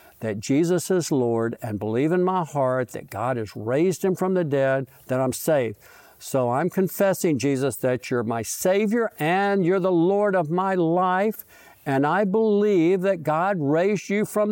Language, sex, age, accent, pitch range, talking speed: English, male, 60-79, American, 135-190 Hz, 180 wpm